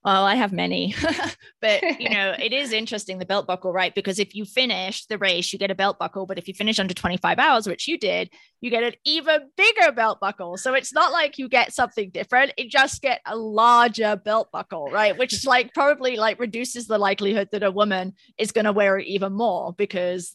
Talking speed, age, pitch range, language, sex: 225 wpm, 20-39, 185-225 Hz, English, female